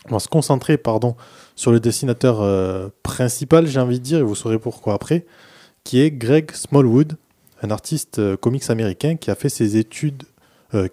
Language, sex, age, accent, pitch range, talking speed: French, male, 20-39, French, 105-140 Hz, 185 wpm